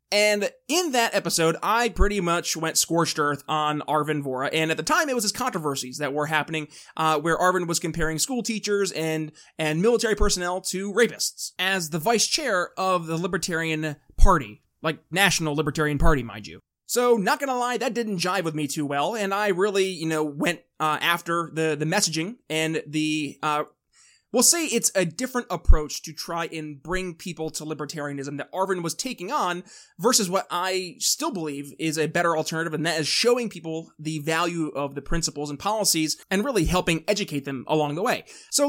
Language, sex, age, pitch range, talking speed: English, male, 20-39, 155-195 Hz, 190 wpm